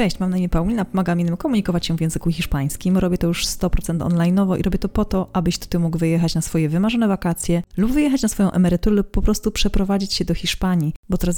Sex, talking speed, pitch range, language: female, 225 wpm, 165-205 Hz, Polish